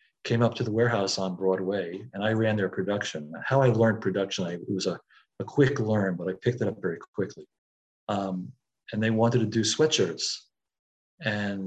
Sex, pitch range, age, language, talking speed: male, 100-120 Hz, 50-69, English, 190 wpm